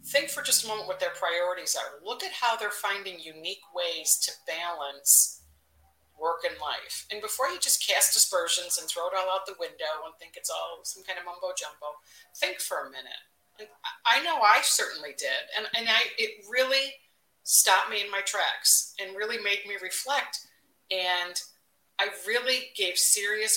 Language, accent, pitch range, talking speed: English, American, 165-215 Hz, 185 wpm